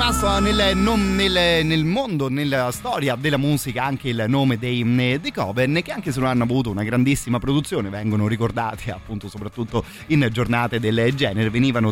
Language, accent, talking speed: Italian, native, 165 wpm